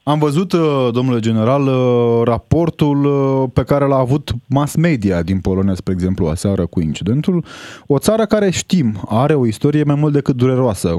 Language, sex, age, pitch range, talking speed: Romanian, male, 20-39, 105-140 Hz, 160 wpm